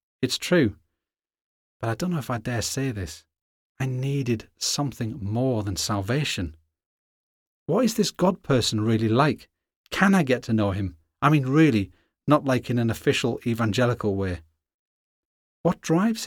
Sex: male